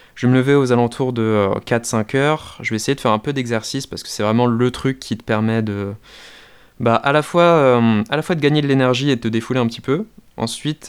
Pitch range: 110-130 Hz